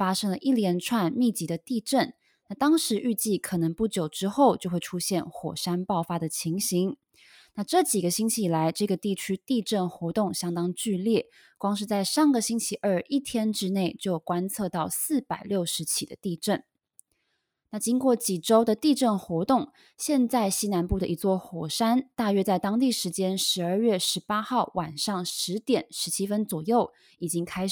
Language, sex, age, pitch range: Chinese, female, 20-39, 180-230 Hz